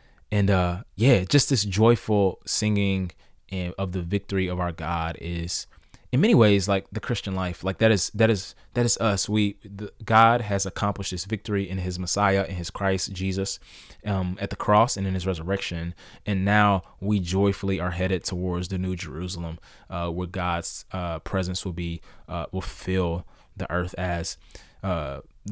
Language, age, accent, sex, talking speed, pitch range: English, 20-39, American, male, 175 wpm, 85-100 Hz